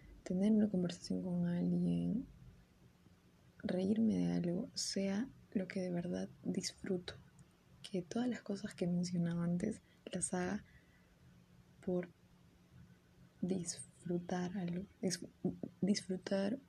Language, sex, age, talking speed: Spanish, female, 20-39, 95 wpm